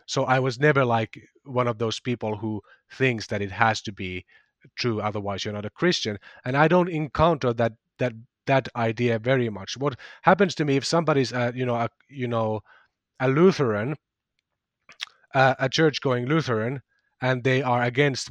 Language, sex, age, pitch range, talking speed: English, male, 30-49, 120-145 Hz, 180 wpm